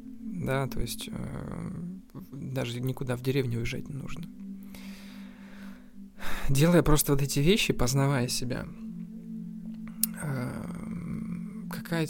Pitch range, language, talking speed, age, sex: 120-185 Hz, Russian, 100 wpm, 20-39, male